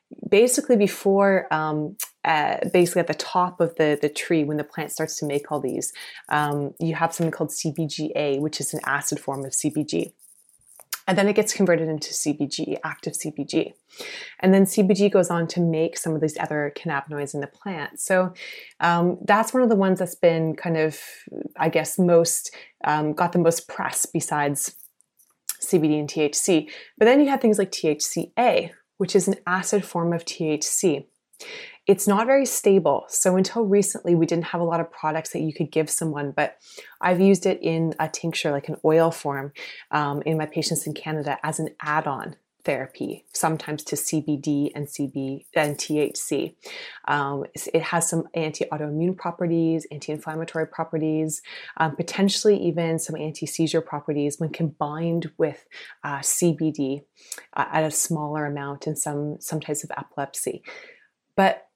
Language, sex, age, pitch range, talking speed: English, female, 20-39, 150-180 Hz, 165 wpm